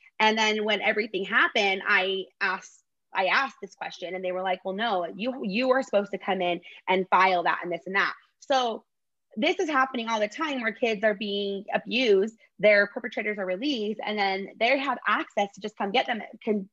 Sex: female